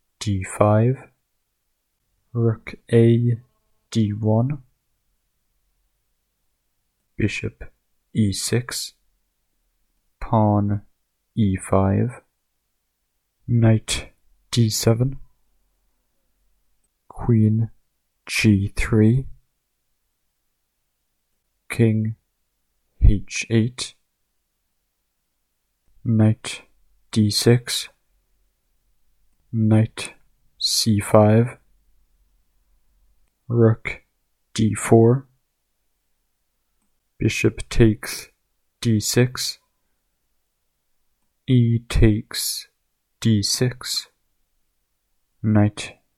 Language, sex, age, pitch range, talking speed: English, male, 50-69, 95-115 Hz, 35 wpm